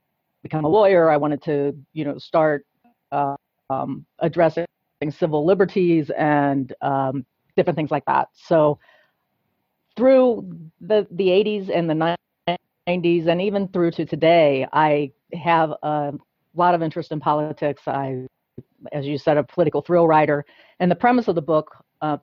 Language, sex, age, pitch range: English, female, 40-59, 150-175 Hz